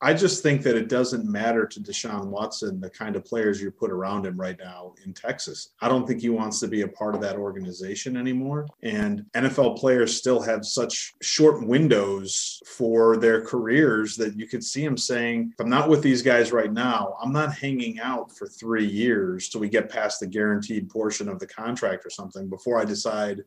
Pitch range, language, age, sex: 110-140 Hz, English, 30-49, male